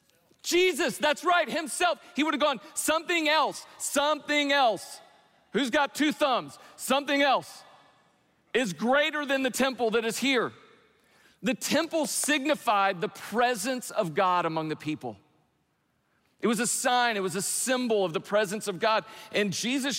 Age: 40-59